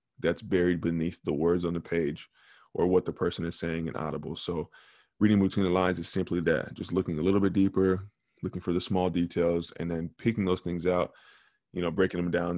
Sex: male